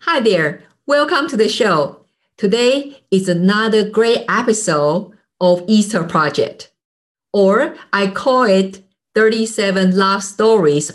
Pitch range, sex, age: 170-220 Hz, female, 50-69